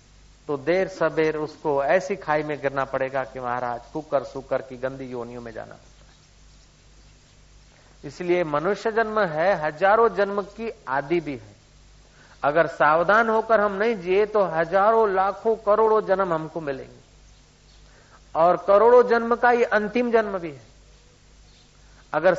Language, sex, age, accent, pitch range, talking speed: Hindi, male, 50-69, native, 135-195 Hz, 135 wpm